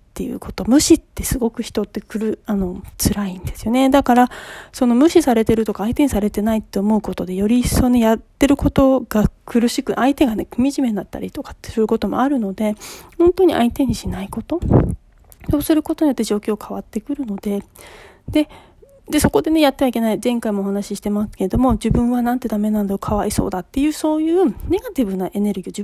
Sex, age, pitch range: female, 40-59, 210-280 Hz